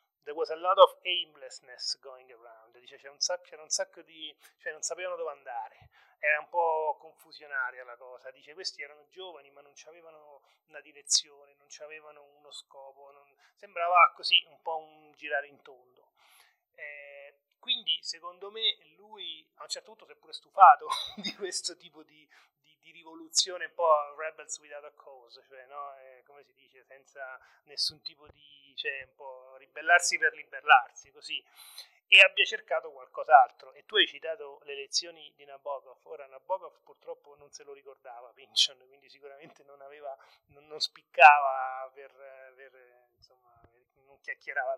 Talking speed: 165 wpm